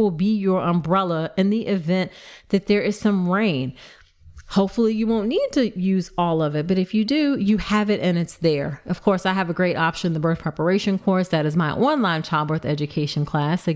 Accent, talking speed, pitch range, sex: American, 220 wpm, 160-220 Hz, female